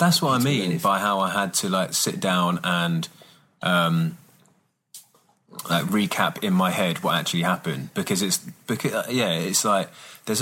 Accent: British